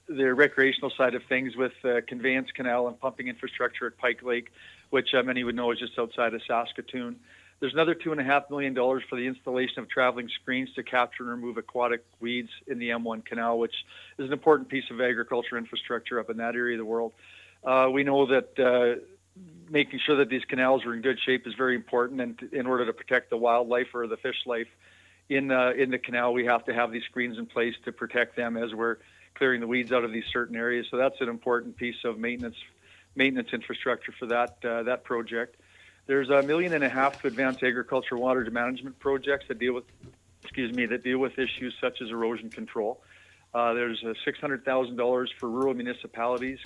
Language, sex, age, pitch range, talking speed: English, male, 40-59, 115-130 Hz, 210 wpm